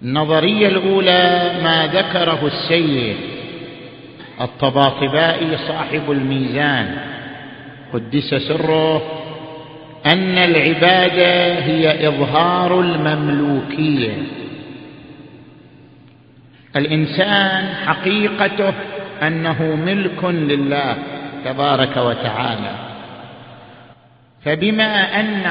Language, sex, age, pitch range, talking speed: Arabic, male, 50-69, 150-190 Hz, 55 wpm